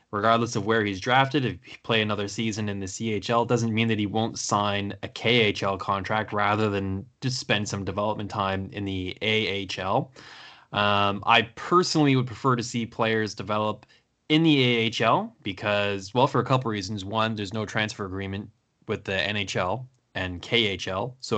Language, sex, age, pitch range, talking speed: English, male, 10-29, 100-120 Hz, 175 wpm